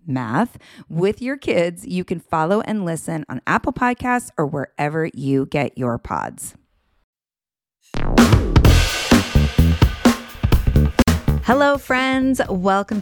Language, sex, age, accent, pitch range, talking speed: English, female, 30-49, American, 150-225 Hz, 95 wpm